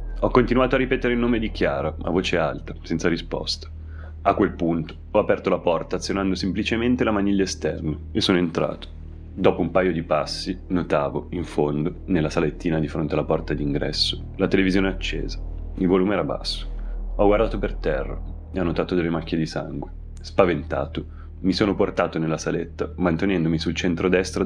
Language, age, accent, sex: Italian, 30-49, native, male